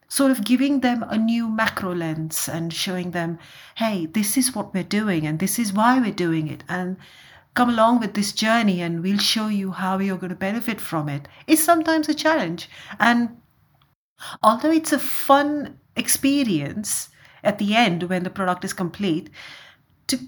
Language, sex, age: English, female, 50-69